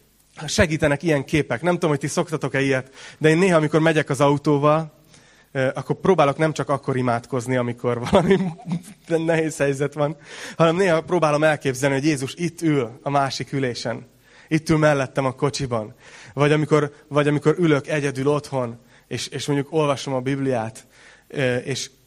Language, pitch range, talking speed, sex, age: Hungarian, 135-165 Hz, 150 wpm, male, 30-49